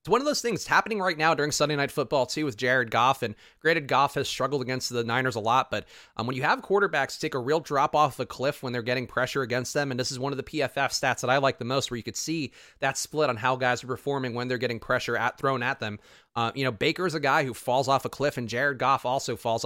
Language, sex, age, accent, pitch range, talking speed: English, male, 30-49, American, 125-160 Hz, 290 wpm